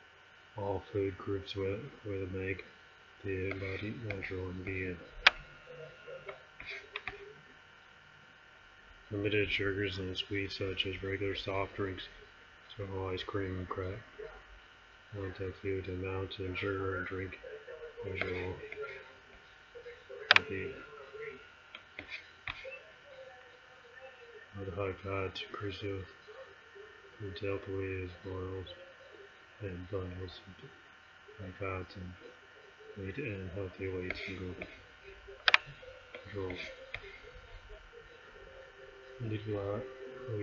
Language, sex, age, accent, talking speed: English, male, 30-49, American, 80 wpm